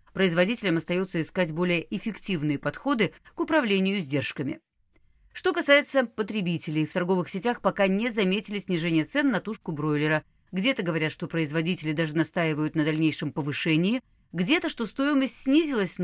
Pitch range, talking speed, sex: 155-220 Hz, 135 wpm, female